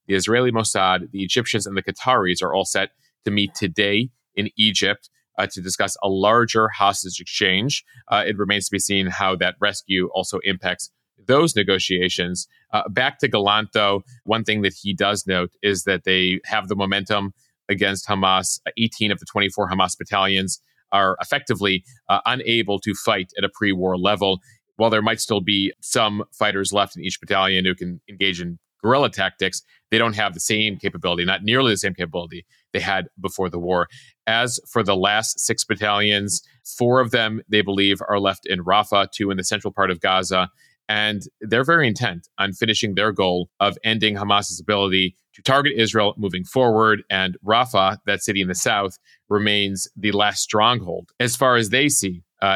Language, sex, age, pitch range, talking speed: English, male, 30-49, 95-110 Hz, 185 wpm